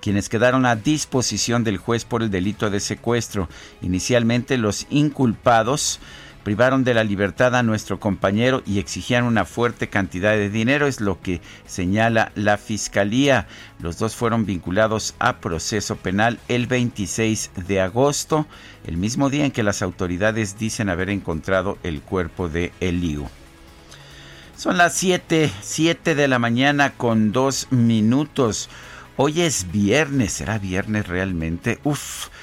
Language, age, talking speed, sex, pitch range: Spanish, 50-69, 140 wpm, male, 100-135 Hz